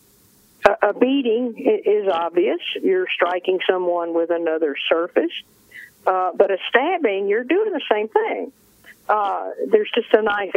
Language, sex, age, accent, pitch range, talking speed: English, female, 50-69, American, 180-280 Hz, 135 wpm